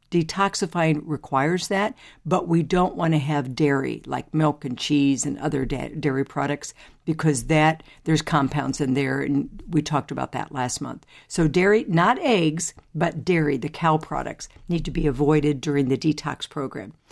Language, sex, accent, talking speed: English, female, American, 170 wpm